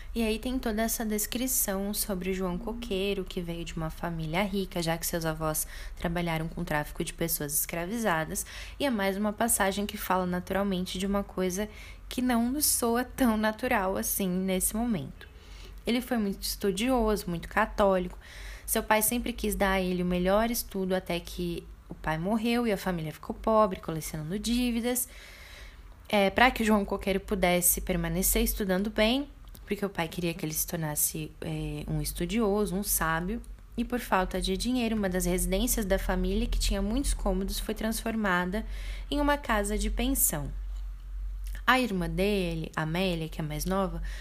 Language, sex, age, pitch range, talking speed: Portuguese, female, 10-29, 175-220 Hz, 175 wpm